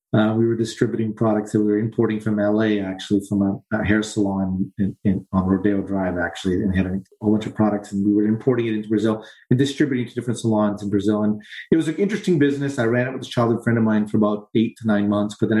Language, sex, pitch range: English, male, 105-120 Hz